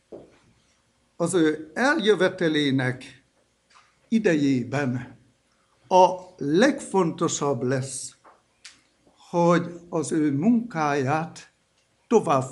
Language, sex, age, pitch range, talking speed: Hungarian, male, 60-79, 130-185 Hz, 60 wpm